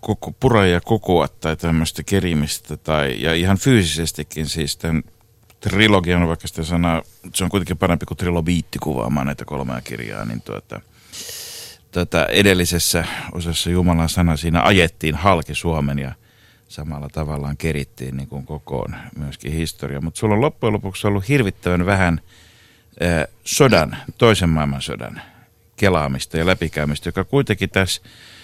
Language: Finnish